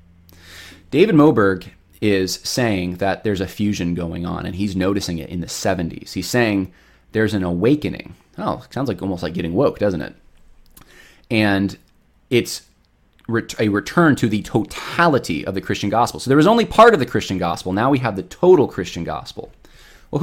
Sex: male